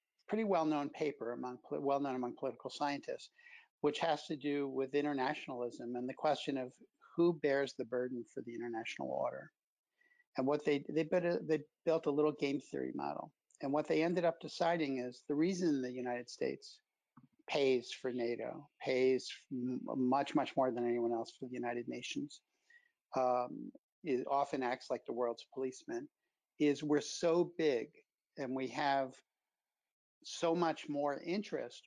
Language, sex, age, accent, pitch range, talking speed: English, male, 60-79, American, 130-165 Hz, 160 wpm